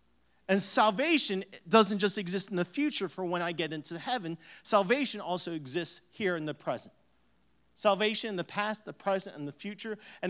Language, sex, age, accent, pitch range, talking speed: English, male, 40-59, American, 160-210 Hz, 180 wpm